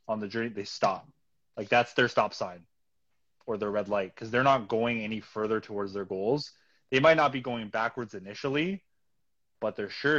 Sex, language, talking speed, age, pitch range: male, English, 195 wpm, 20-39, 110-130 Hz